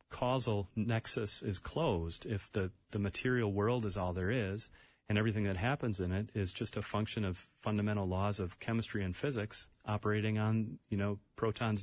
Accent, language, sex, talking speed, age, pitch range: American, English, male, 180 wpm, 30-49, 95-115 Hz